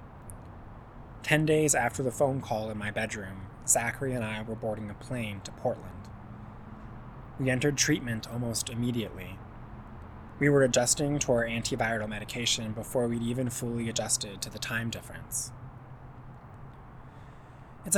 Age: 20-39